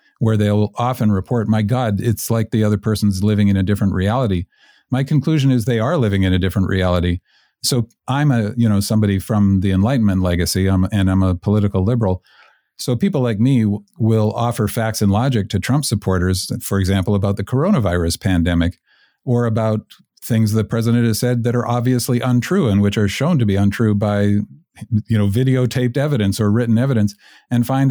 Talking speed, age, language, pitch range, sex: 190 wpm, 50-69, English, 100-120 Hz, male